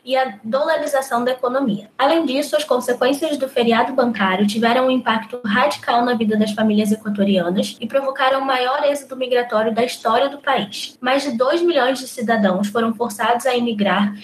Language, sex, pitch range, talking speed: Portuguese, female, 215-270 Hz, 175 wpm